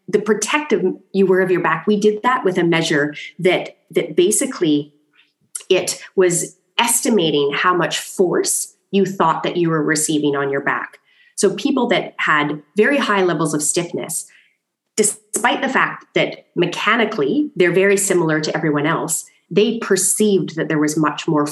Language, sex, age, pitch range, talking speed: English, female, 30-49, 160-215 Hz, 160 wpm